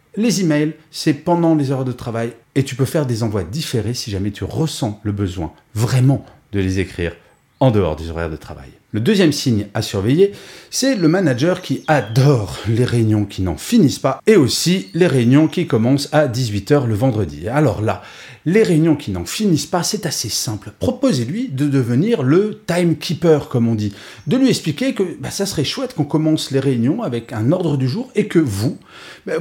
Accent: French